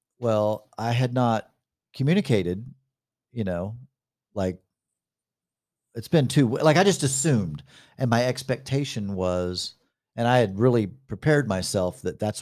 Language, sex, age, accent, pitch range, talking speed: English, male, 40-59, American, 100-140 Hz, 130 wpm